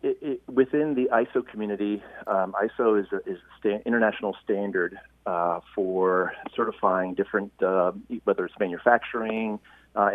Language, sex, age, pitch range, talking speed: English, male, 40-59, 95-105 Hz, 135 wpm